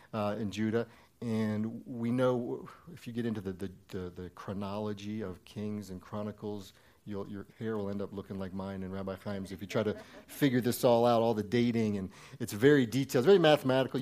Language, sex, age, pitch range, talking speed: English, male, 50-69, 105-130 Hz, 210 wpm